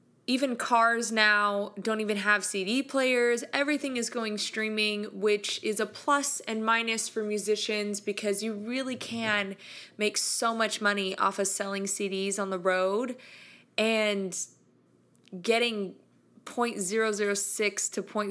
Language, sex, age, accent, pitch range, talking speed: English, female, 20-39, American, 195-230 Hz, 125 wpm